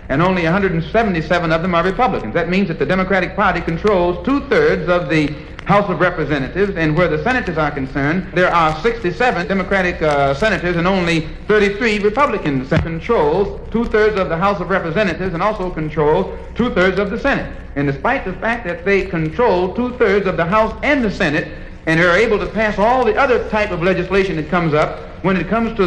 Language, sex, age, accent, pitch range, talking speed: English, male, 60-79, American, 165-210 Hz, 195 wpm